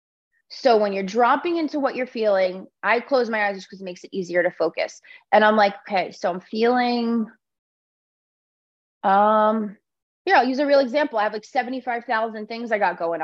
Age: 20-39